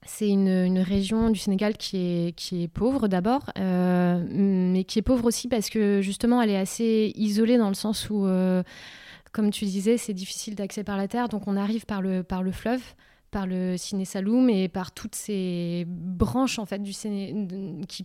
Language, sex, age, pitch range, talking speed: French, female, 20-39, 185-220 Hz, 205 wpm